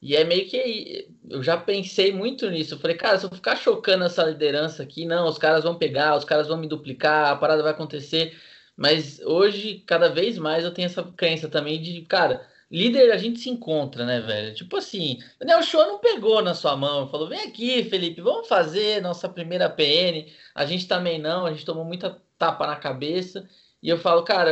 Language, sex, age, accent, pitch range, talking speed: Portuguese, male, 20-39, Brazilian, 155-190 Hz, 210 wpm